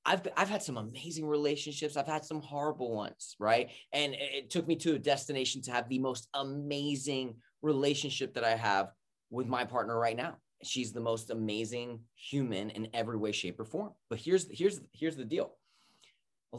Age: 20-39